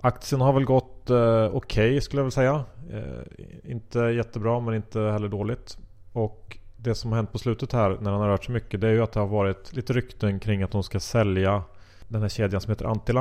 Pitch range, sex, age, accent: 95-115 Hz, male, 30-49, Norwegian